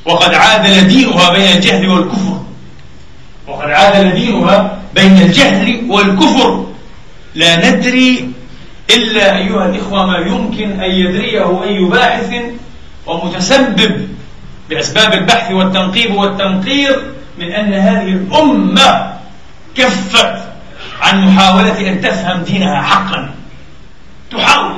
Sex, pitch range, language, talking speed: male, 175-220 Hz, Arabic, 95 wpm